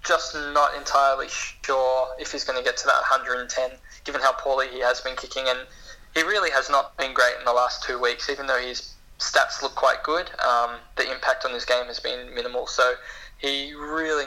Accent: Australian